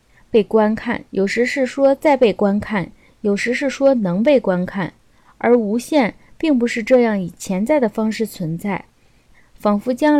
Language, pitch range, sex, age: Chinese, 200-265 Hz, female, 20-39